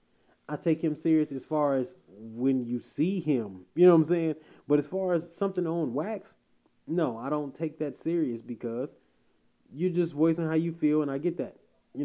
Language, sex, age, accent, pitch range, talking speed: English, male, 20-39, American, 130-150 Hz, 205 wpm